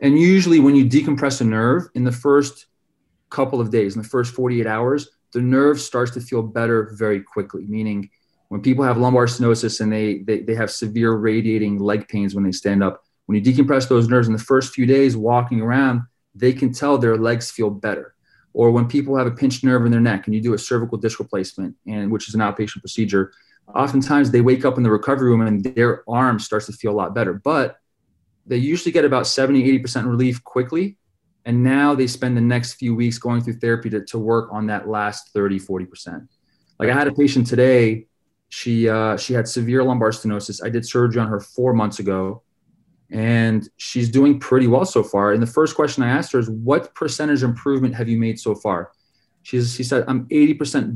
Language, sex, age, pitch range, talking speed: English, male, 30-49, 110-130 Hz, 210 wpm